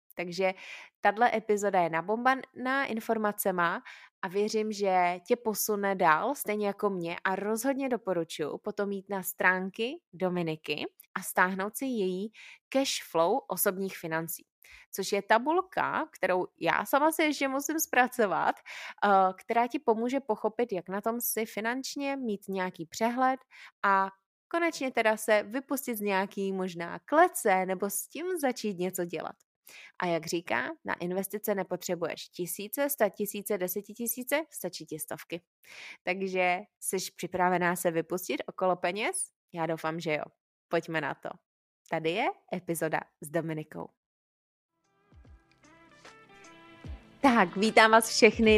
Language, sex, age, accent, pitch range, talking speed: Czech, female, 20-39, native, 180-240 Hz, 130 wpm